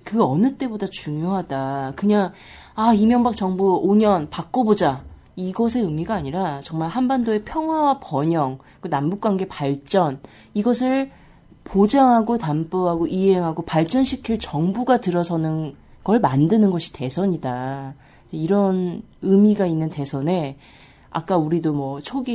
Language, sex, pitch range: Korean, female, 155-220 Hz